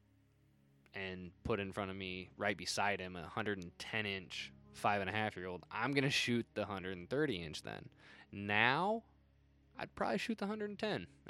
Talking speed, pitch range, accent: 135 wpm, 90-110 Hz, American